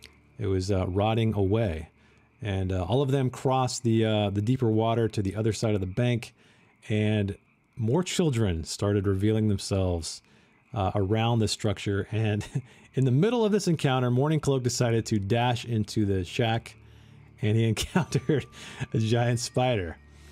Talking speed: 160 wpm